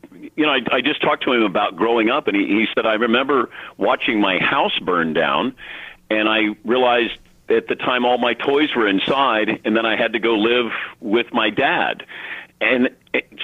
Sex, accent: male, American